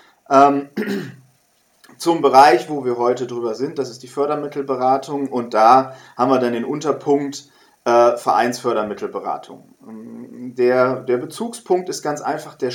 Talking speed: 130 wpm